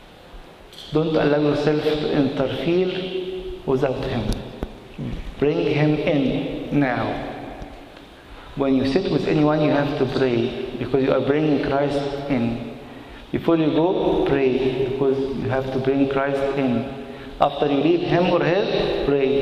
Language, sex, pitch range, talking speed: English, male, 130-155 Hz, 135 wpm